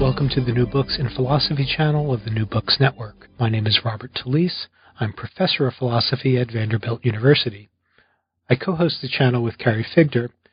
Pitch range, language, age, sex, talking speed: 115-145 Hz, English, 40-59, male, 190 wpm